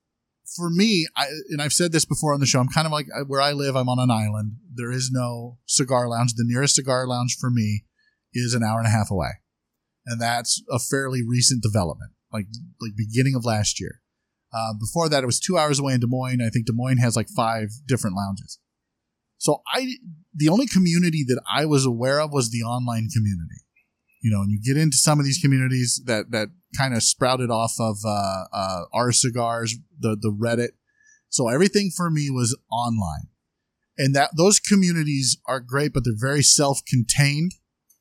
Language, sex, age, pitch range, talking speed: English, male, 30-49, 115-150 Hz, 200 wpm